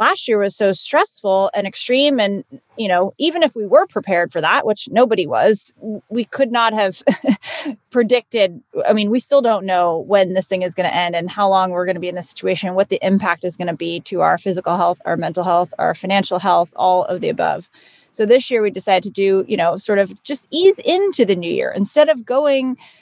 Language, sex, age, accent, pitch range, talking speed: English, female, 30-49, American, 190-235 Hz, 230 wpm